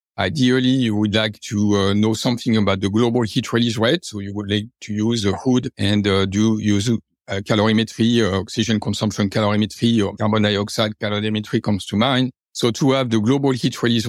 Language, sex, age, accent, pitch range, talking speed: English, male, 50-69, French, 100-115 Hz, 185 wpm